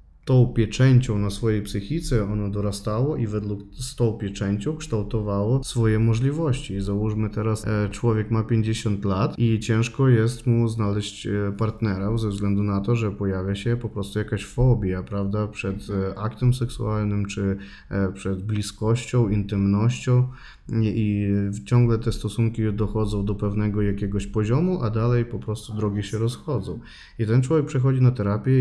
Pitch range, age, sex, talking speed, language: 100-120 Hz, 20-39, male, 140 wpm, Polish